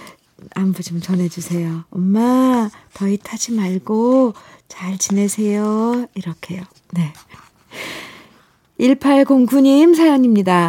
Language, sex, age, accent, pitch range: Korean, female, 50-69, native, 175-240 Hz